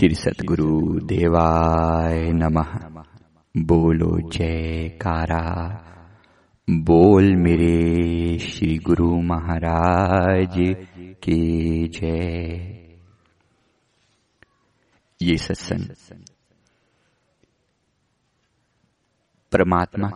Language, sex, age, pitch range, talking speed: Hindi, male, 50-69, 85-95 Hz, 55 wpm